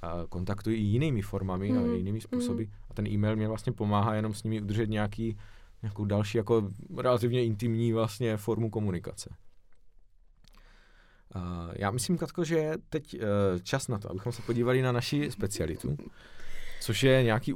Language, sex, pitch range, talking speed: Czech, male, 100-125 Hz, 150 wpm